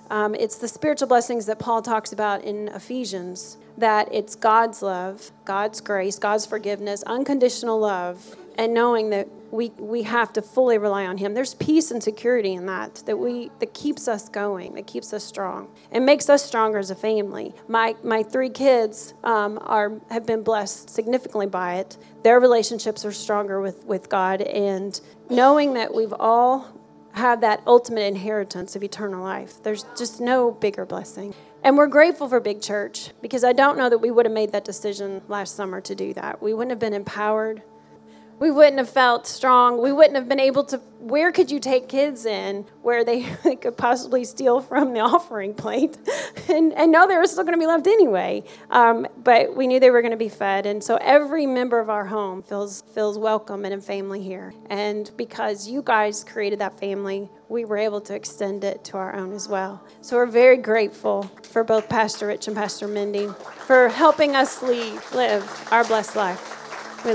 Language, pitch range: English, 205-245 Hz